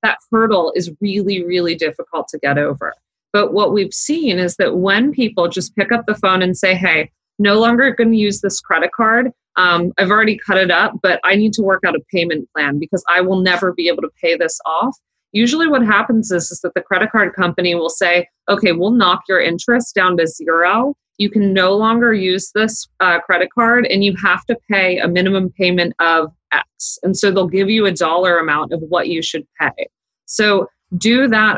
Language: English